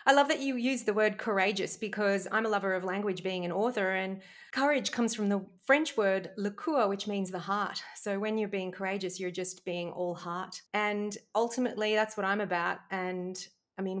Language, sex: English, female